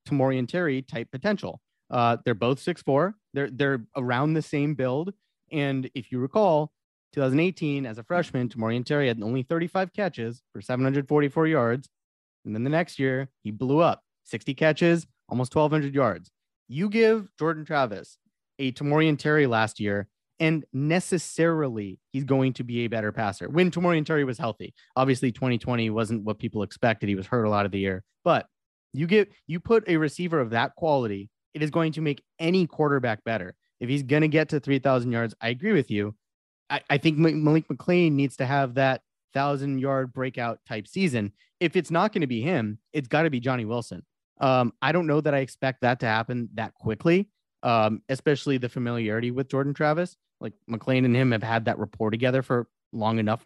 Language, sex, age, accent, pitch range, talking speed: English, male, 30-49, American, 115-155 Hz, 190 wpm